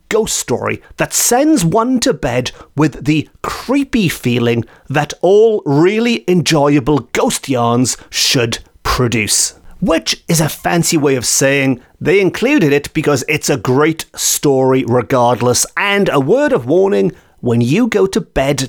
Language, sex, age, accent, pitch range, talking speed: English, male, 30-49, British, 130-190 Hz, 145 wpm